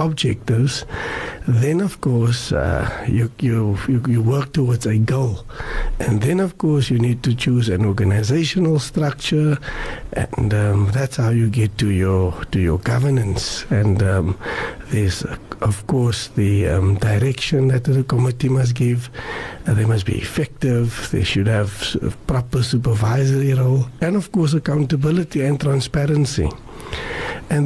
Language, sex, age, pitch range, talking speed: English, male, 60-79, 115-145 Hz, 145 wpm